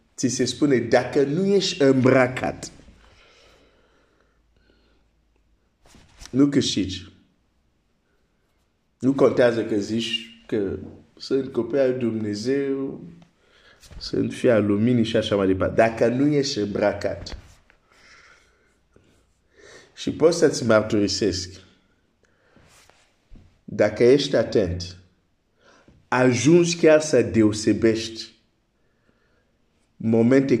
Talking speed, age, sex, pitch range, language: 80 wpm, 50-69, male, 95-130 Hz, Romanian